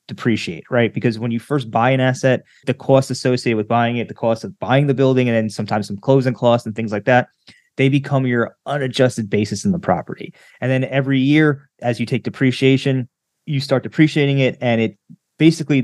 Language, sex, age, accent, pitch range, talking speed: English, male, 20-39, American, 115-140 Hz, 205 wpm